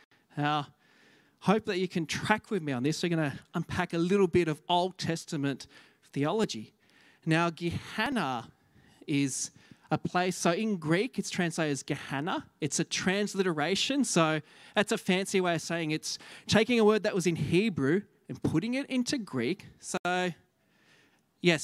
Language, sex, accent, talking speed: English, male, Australian, 160 wpm